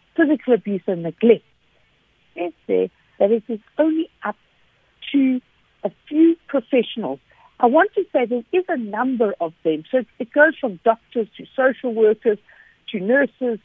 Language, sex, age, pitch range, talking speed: English, female, 60-79, 200-275 Hz, 155 wpm